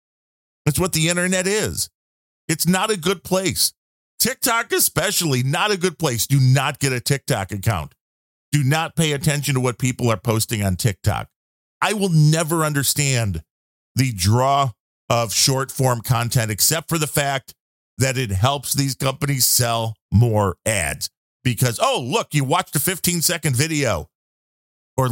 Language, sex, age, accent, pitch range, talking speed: English, male, 40-59, American, 110-155 Hz, 150 wpm